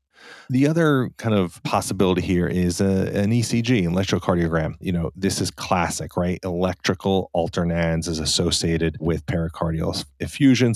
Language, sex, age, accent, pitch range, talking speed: English, male, 30-49, American, 85-100 Hz, 135 wpm